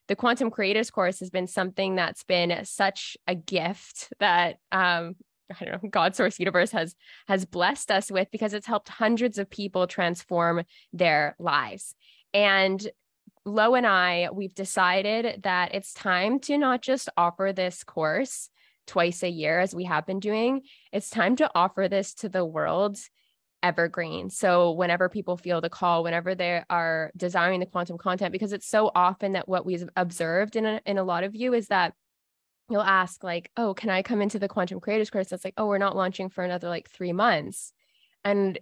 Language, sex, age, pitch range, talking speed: English, female, 20-39, 180-215 Hz, 185 wpm